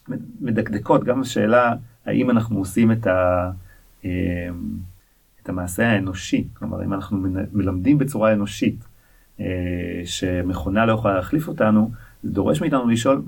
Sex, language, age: male, Hebrew, 30-49